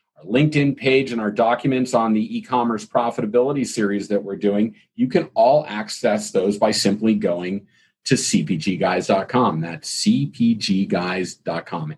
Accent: American